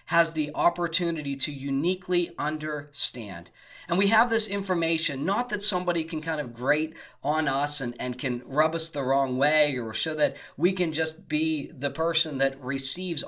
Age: 40-59